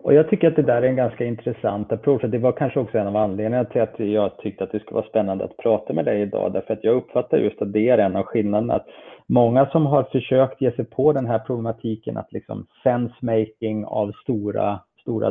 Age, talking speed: 30-49, 235 wpm